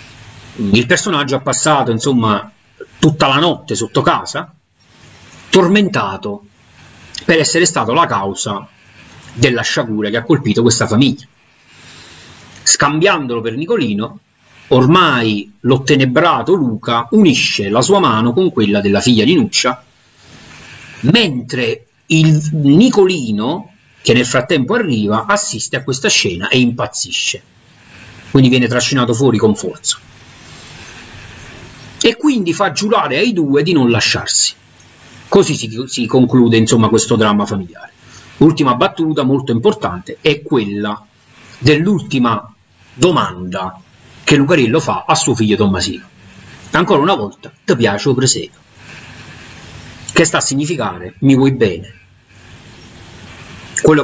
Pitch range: 110-145 Hz